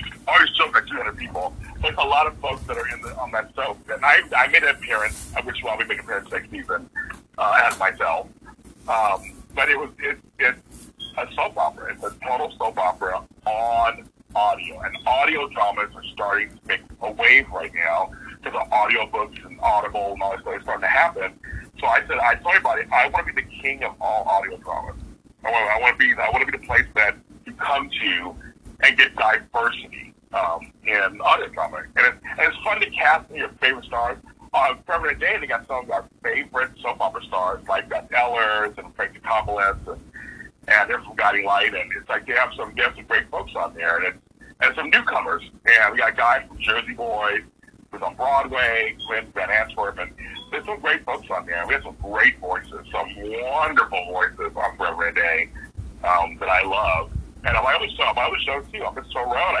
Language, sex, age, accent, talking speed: English, male, 50-69, American, 215 wpm